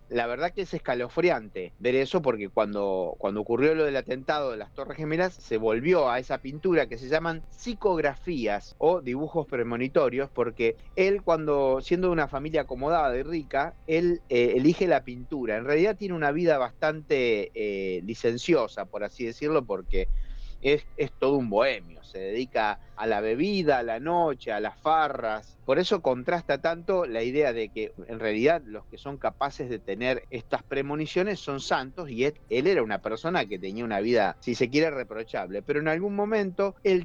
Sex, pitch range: male, 125-180 Hz